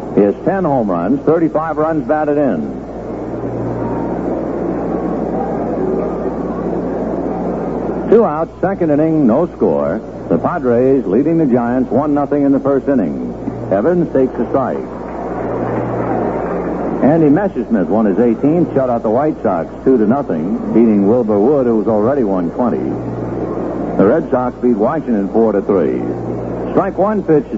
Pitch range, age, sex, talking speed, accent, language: 110-155 Hz, 60-79, male, 120 wpm, American, English